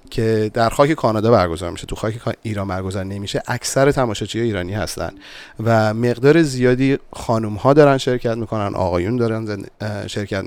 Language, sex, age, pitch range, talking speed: English, male, 30-49, 105-130 Hz, 150 wpm